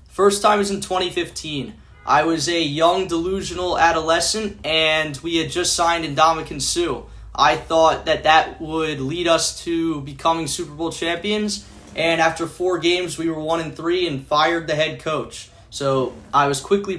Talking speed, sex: 165 wpm, male